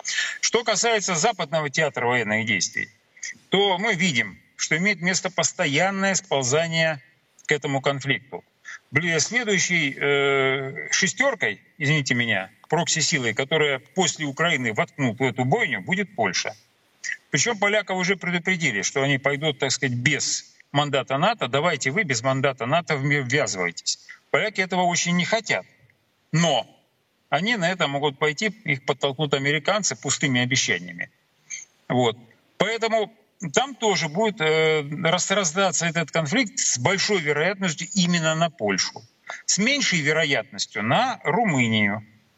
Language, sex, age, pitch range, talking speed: Russian, male, 40-59, 135-190 Hz, 120 wpm